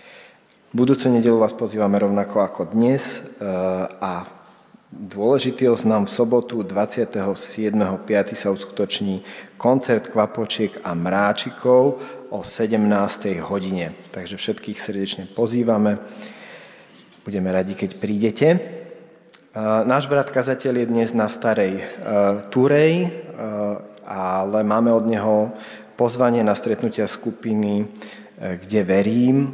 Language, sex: Slovak, male